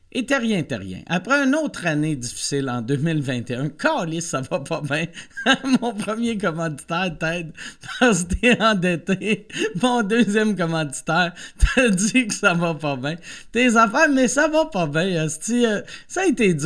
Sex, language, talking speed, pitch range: male, French, 175 wpm, 150-225 Hz